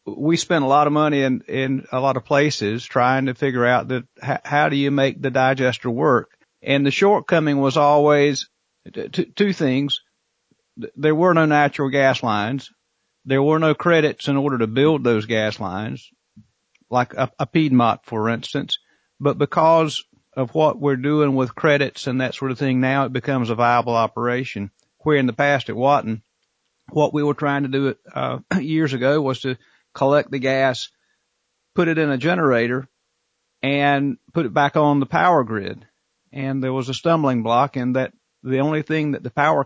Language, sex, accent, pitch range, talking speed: English, male, American, 130-150 Hz, 185 wpm